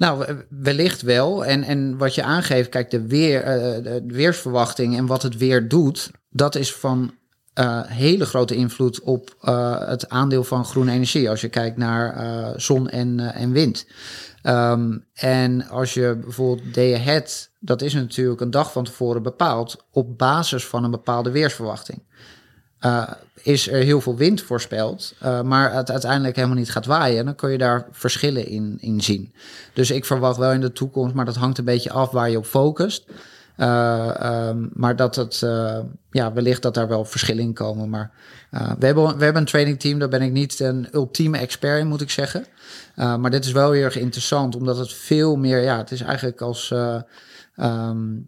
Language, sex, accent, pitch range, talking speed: Dutch, male, Dutch, 120-140 Hz, 195 wpm